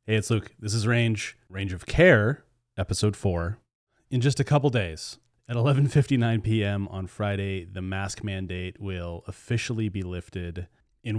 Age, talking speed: 30-49, 155 wpm